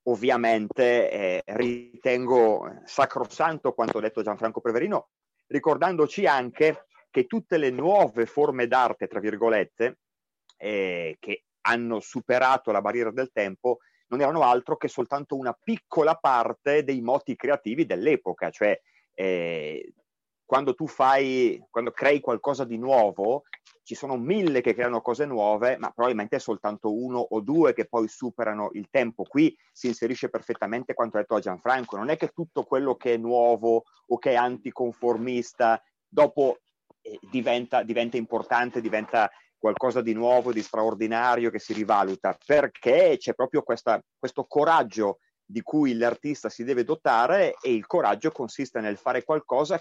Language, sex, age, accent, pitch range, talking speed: Italian, male, 30-49, native, 115-165 Hz, 145 wpm